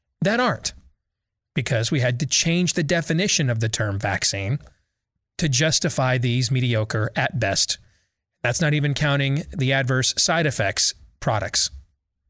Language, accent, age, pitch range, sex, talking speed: English, American, 30-49, 100-150 Hz, male, 135 wpm